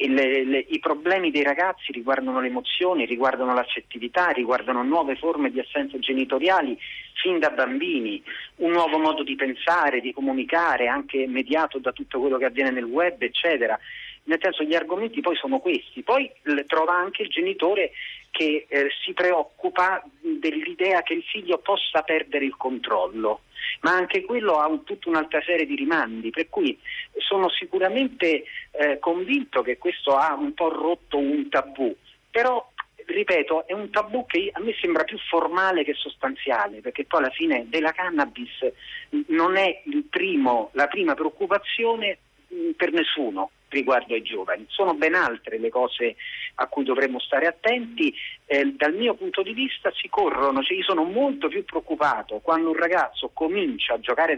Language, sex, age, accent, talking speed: Italian, male, 40-59, native, 165 wpm